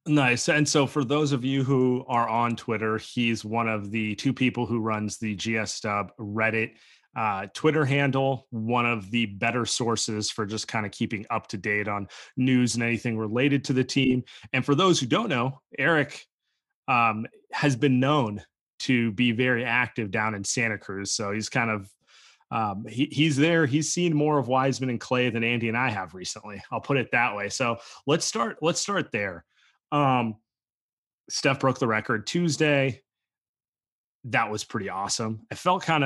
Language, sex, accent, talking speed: English, male, American, 185 wpm